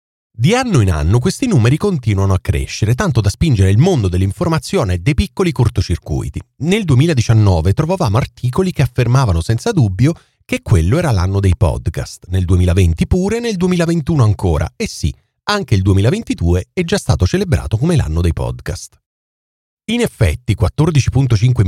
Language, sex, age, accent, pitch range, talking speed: Italian, male, 40-59, native, 100-140 Hz, 150 wpm